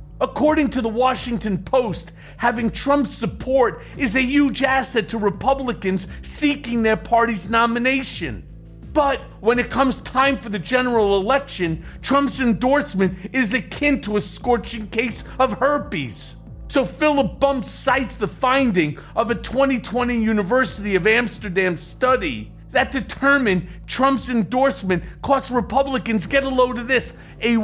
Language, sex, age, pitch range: English, male, 50-69, 210-265 Hz